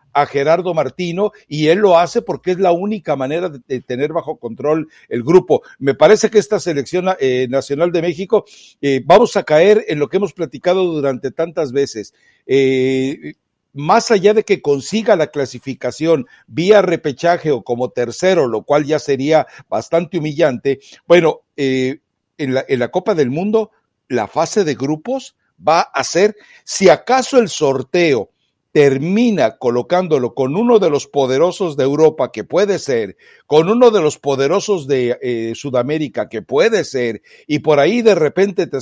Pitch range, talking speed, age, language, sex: 135-185 Hz, 165 wpm, 60-79, Spanish, male